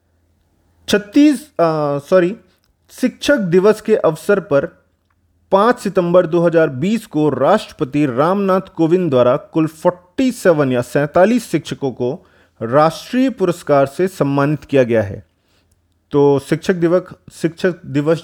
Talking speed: 110 wpm